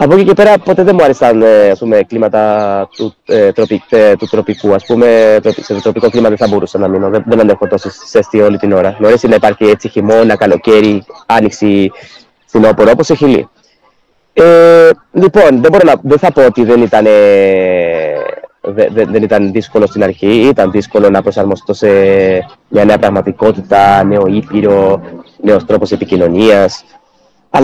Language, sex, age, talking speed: Greek, male, 20-39, 140 wpm